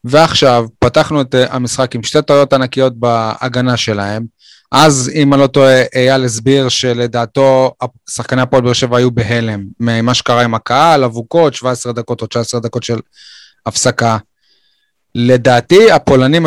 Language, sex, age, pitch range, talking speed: Hebrew, male, 20-39, 120-135 Hz, 140 wpm